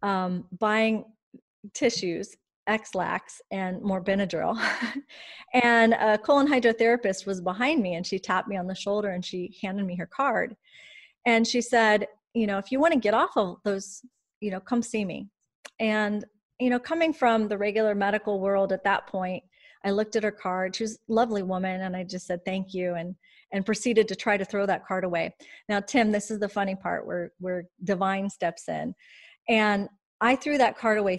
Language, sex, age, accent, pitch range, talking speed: English, female, 30-49, American, 190-230 Hz, 195 wpm